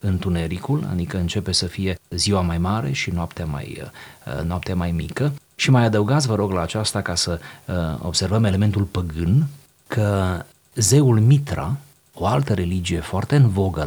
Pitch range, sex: 85-120 Hz, male